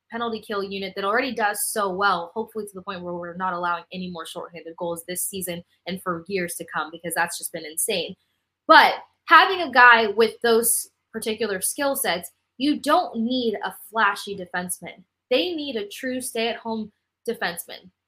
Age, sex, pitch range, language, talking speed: 20-39, female, 185-230 Hz, English, 175 wpm